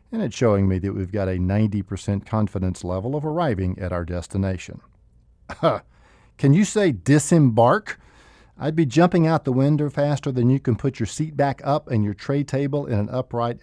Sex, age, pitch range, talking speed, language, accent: male, 50-69, 105-140 Hz, 185 wpm, English, American